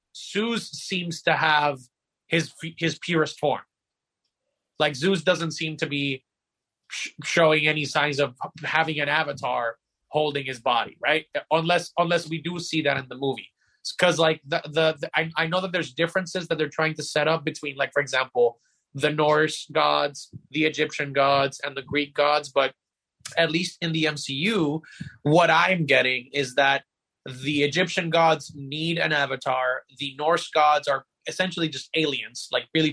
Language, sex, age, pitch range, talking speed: English, male, 30-49, 140-165 Hz, 170 wpm